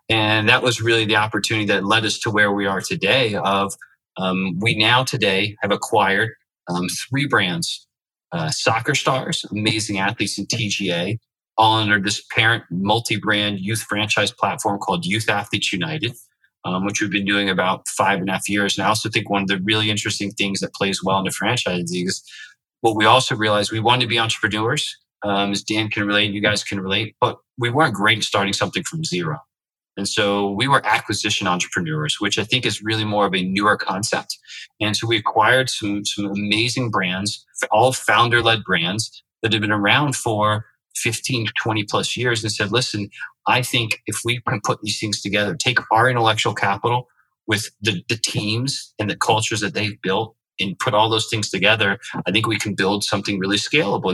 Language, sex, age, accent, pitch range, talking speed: English, male, 30-49, American, 100-115 Hz, 195 wpm